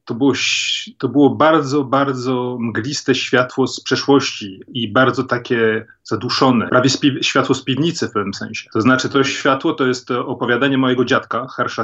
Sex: male